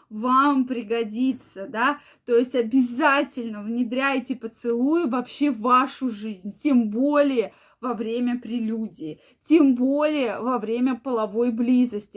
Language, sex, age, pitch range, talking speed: Russian, female, 20-39, 240-295 Hz, 115 wpm